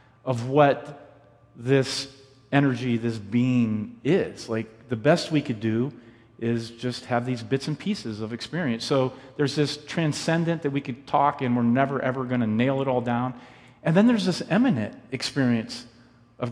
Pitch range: 120-155 Hz